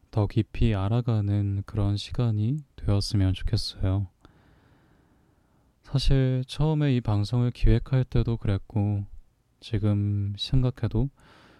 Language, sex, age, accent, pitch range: Korean, male, 20-39, native, 100-115 Hz